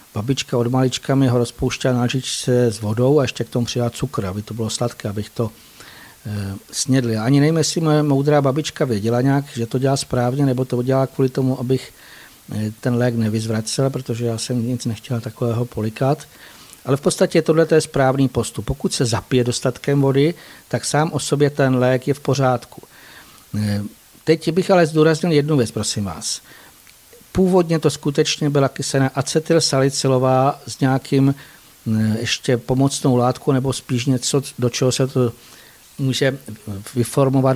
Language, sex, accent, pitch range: Czech, male, native, 120-145 Hz